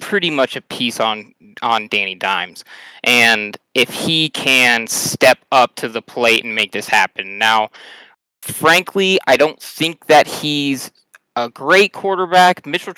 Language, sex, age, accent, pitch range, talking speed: English, male, 20-39, American, 120-145 Hz, 150 wpm